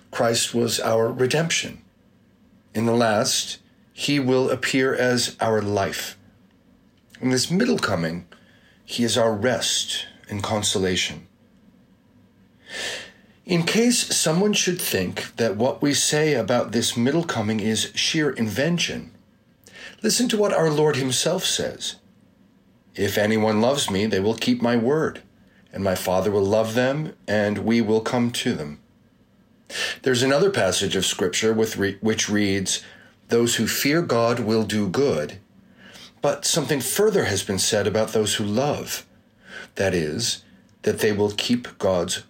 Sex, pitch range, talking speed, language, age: male, 105-145 Hz, 140 wpm, English, 40-59